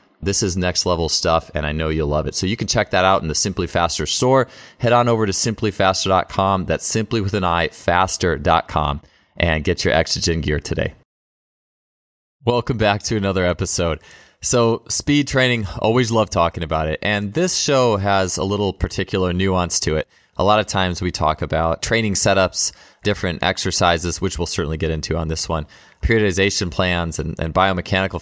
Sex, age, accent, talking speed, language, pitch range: male, 20-39, American, 180 wpm, English, 85-100 Hz